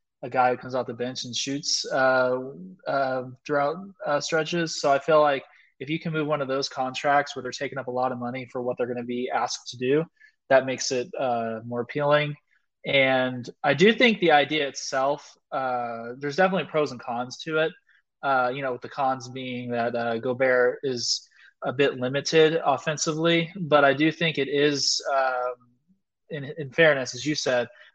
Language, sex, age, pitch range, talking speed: English, male, 20-39, 125-150 Hz, 200 wpm